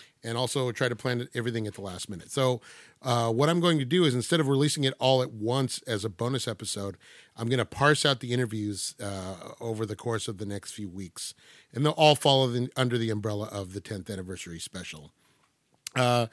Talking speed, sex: 215 wpm, male